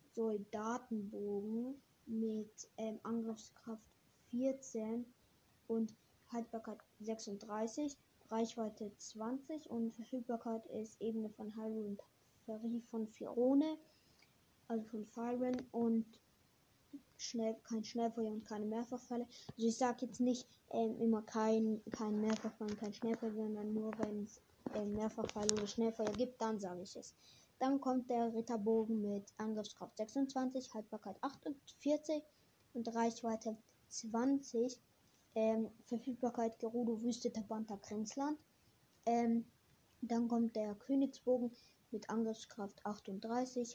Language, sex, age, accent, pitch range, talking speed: German, female, 20-39, German, 220-245 Hz, 110 wpm